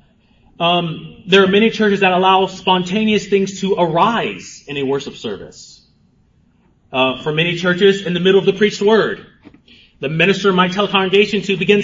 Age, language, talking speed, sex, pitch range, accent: 30-49, English, 170 wpm, male, 190-220 Hz, American